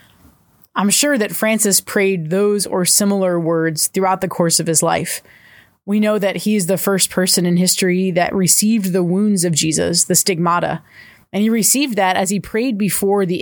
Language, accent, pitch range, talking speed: English, American, 175-200 Hz, 190 wpm